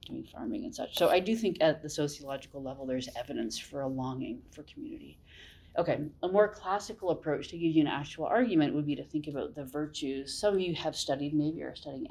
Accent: American